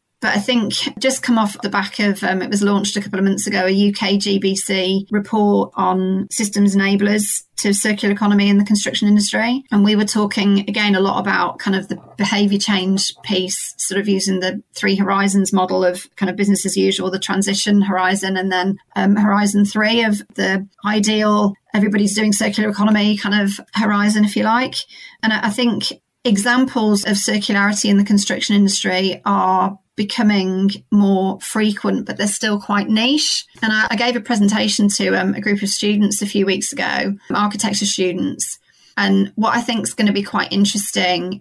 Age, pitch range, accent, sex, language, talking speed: 40-59, 195-215 Hz, British, female, English, 185 wpm